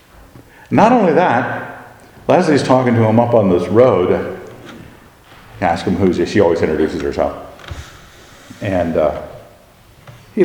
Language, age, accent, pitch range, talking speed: English, 50-69, American, 110-140 Hz, 120 wpm